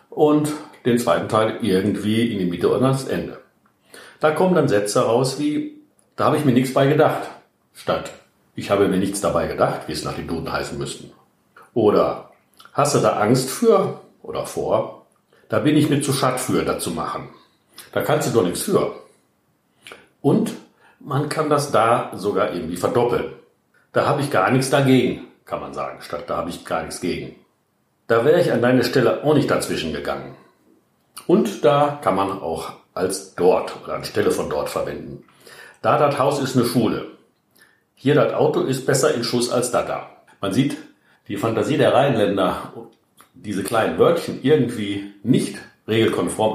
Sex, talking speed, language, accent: male, 175 wpm, German, German